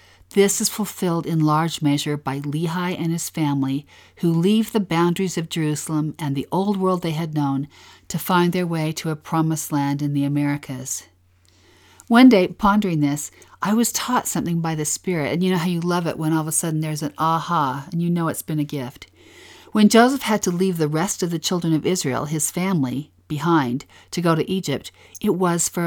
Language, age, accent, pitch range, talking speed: English, 50-69, American, 145-185 Hz, 210 wpm